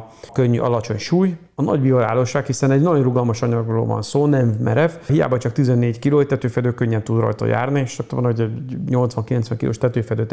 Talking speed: 185 wpm